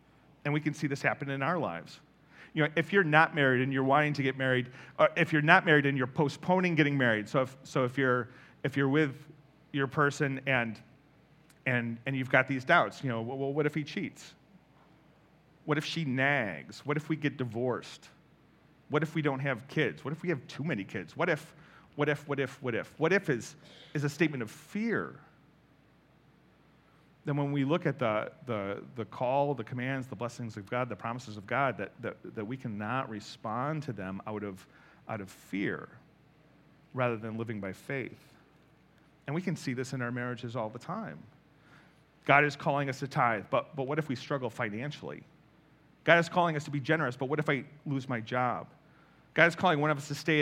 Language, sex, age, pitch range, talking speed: English, male, 40-59, 130-155 Hz, 210 wpm